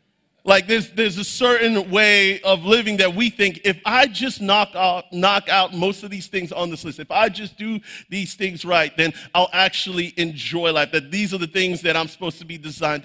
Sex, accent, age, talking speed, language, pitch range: male, American, 40-59, 215 wpm, English, 155-190 Hz